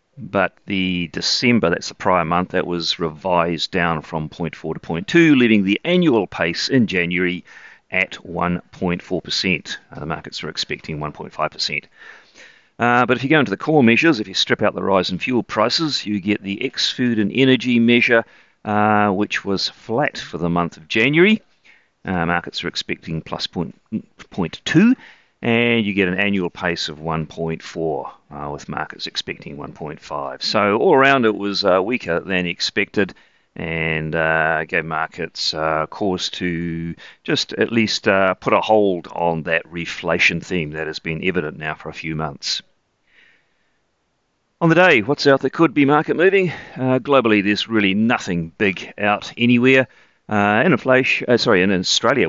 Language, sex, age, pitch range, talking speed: English, male, 40-59, 85-120 Hz, 170 wpm